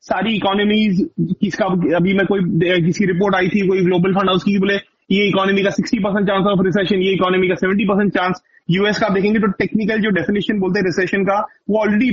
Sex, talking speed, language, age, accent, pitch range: male, 210 wpm, Hindi, 30-49, native, 195-230 Hz